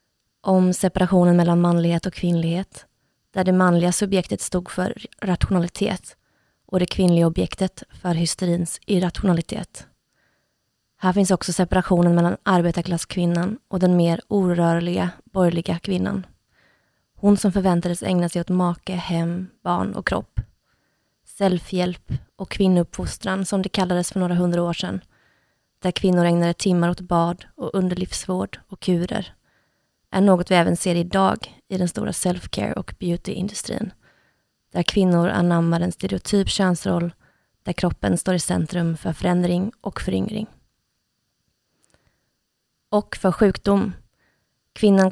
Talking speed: 125 wpm